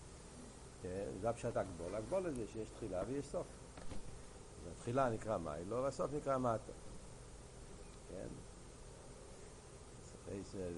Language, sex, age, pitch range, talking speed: Hebrew, male, 60-79, 100-130 Hz, 100 wpm